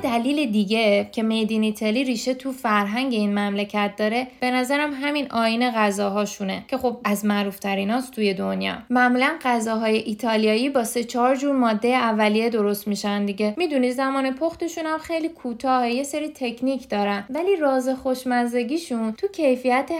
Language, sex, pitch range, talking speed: Persian, female, 220-275 Hz, 150 wpm